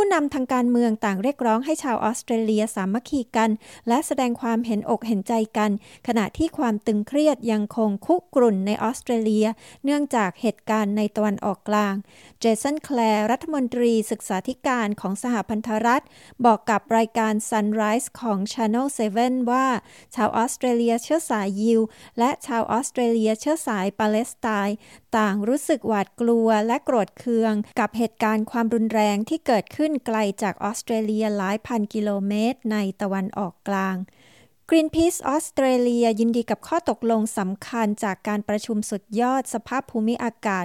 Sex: female